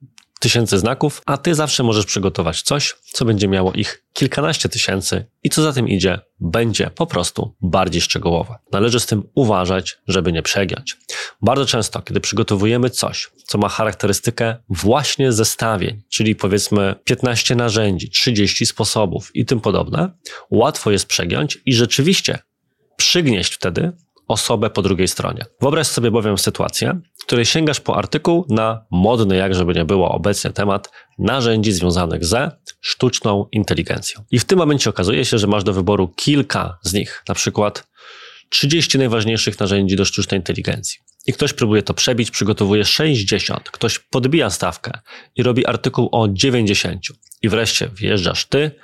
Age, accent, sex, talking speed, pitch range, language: 20-39, native, male, 150 wpm, 100-125 Hz, Polish